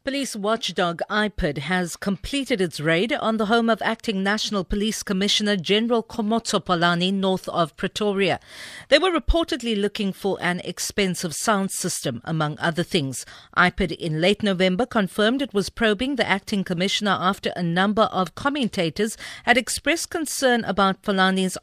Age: 50-69